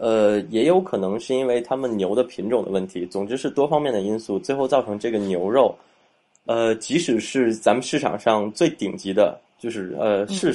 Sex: male